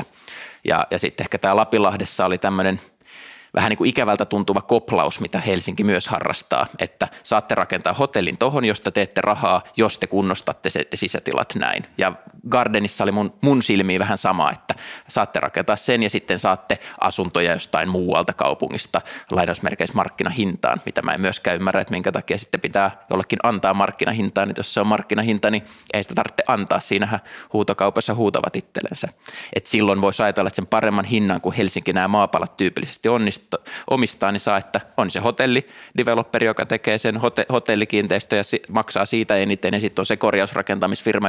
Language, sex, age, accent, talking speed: Finnish, male, 20-39, native, 165 wpm